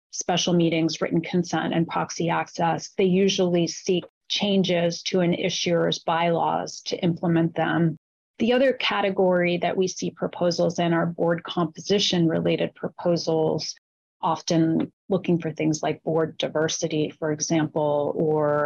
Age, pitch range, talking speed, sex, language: 30-49, 160-180 Hz, 130 wpm, female, English